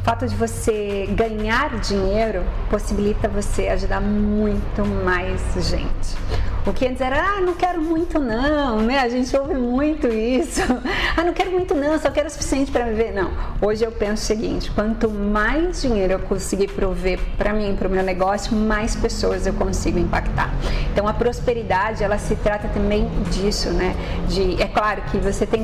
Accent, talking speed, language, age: Brazilian, 175 wpm, Portuguese, 30-49